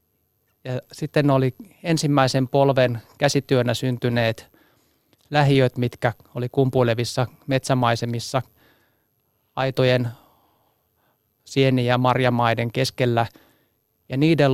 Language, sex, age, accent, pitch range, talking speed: Finnish, male, 30-49, native, 120-140 Hz, 80 wpm